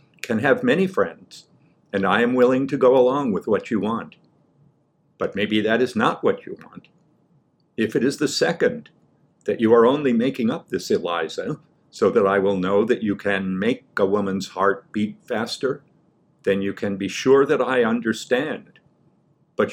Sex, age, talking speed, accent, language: male, 50-69, 180 wpm, American, English